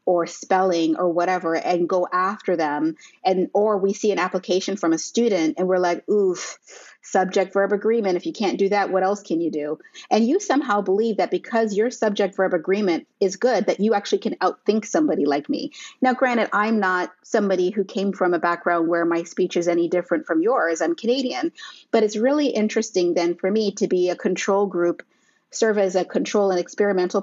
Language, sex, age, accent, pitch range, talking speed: English, female, 30-49, American, 175-220 Hz, 200 wpm